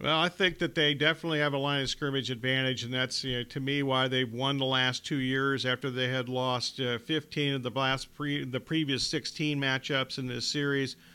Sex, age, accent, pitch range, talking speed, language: male, 50-69, American, 135-165 Hz, 225 wpm, English